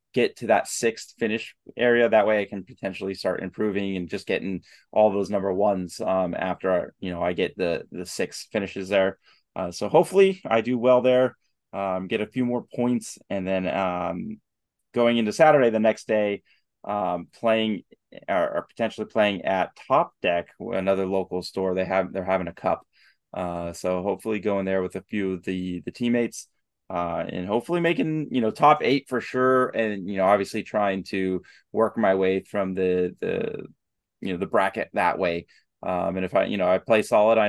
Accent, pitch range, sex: American, 95-115 Hz, male